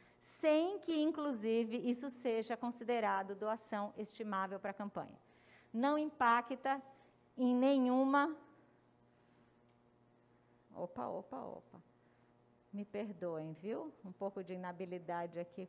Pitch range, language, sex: 200-280 Hz, Portuguese, female